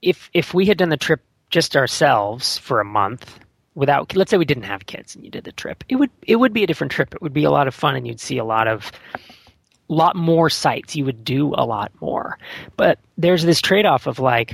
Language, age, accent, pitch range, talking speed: English, 30-49, American, 110-150 Hz, 250 wpm